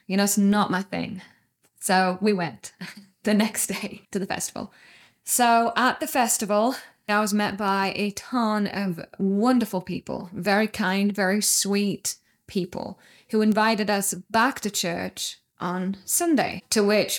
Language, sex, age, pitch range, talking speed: English, female, 10-29, 190-220 Hz, 150 wpm